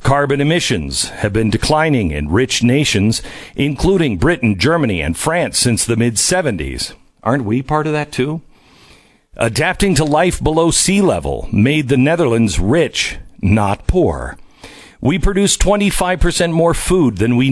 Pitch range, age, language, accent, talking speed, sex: 115-150 Hz, 50-69, English, American, 140 wpm, male